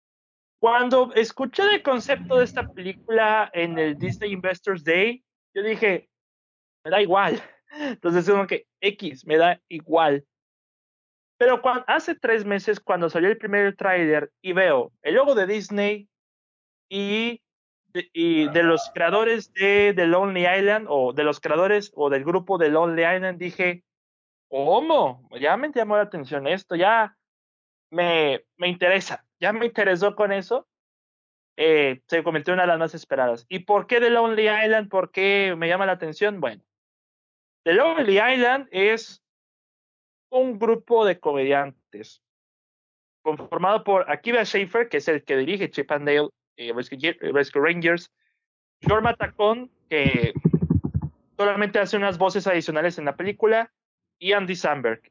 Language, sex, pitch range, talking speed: Spanish, male, 165-220 Hz, 150 wpm